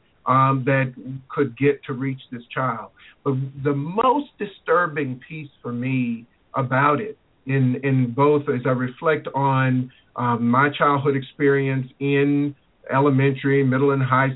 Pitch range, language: 130-150 Hz, English